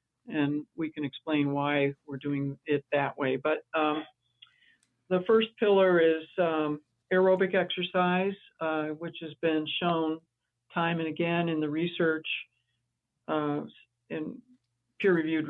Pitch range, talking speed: 150-180 Hz, 130 wpm